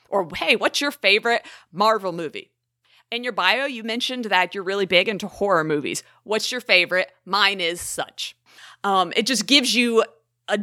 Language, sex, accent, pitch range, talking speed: English, female, American, 175-230 Hz, 175 wpm